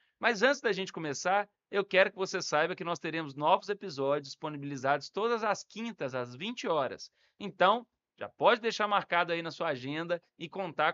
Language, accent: Portuguese, Brazilian